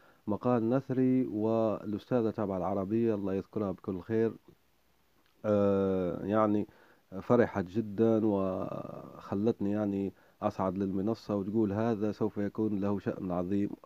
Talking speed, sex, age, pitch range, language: 105 wpm, male, 30-49, 95-120 Hz, Arabic